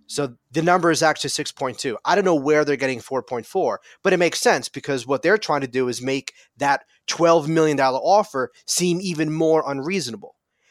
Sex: male